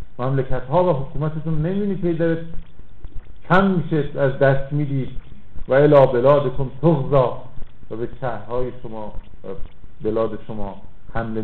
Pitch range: 110-165 Hz